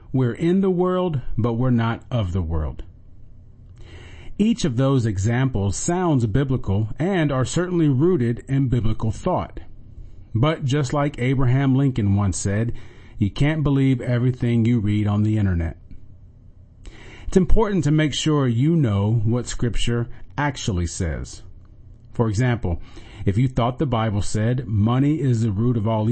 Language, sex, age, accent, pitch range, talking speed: English, male, 40-59, American, 100-130 Hz, 145 wpm